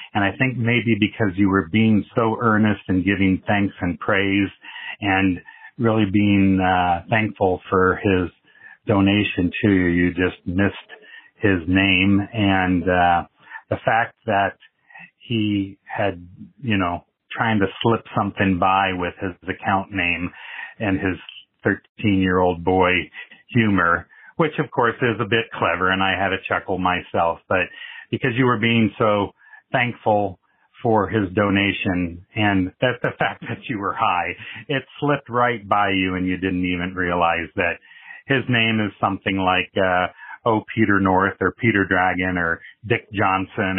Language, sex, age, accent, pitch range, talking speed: English, male, 40-59, American, 90-110 Hz, 155 wpm